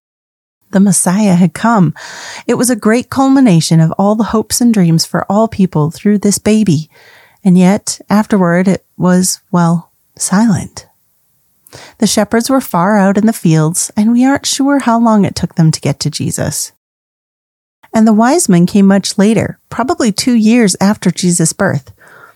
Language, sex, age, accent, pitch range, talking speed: English, female, 30-49, American, 175-220 Hz, 165 wpm